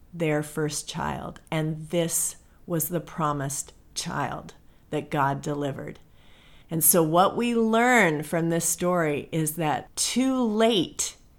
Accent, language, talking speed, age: American, English, 125 wpm, 50-69